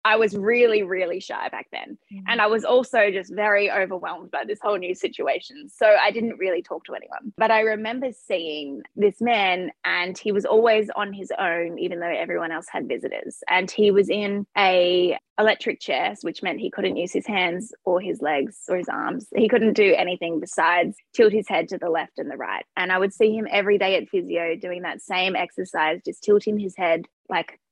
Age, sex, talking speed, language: 10-29, female, 210 wpm, English